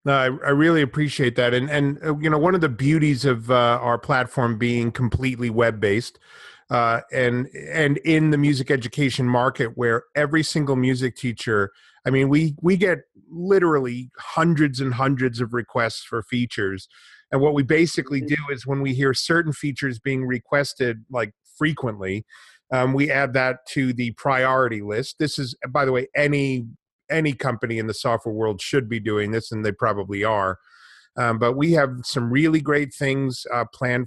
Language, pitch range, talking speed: English, 120-140 Hz, 180 wpm